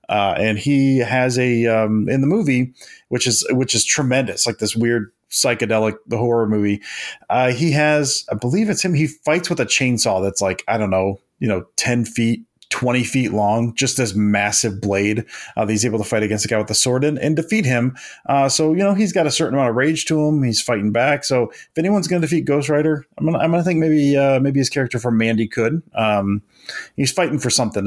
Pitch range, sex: 110-145 Hz, male